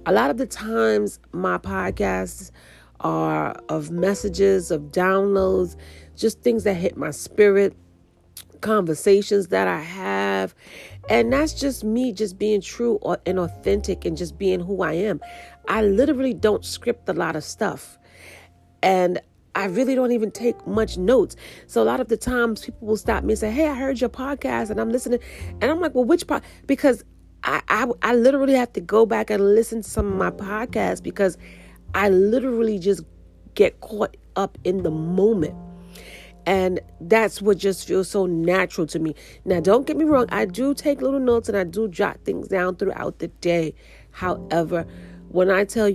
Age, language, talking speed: 40-59, English, 180 wpm